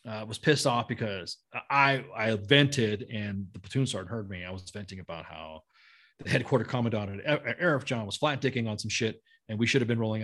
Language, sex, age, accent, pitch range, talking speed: English, male, 30-49, American, 110-145 Hz, 225 wpm